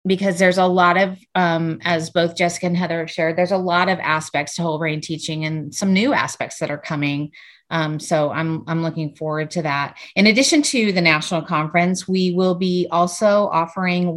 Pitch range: 165-190 Hz